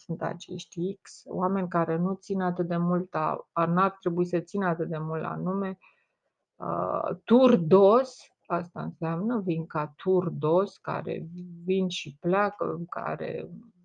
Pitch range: 170-200 Hz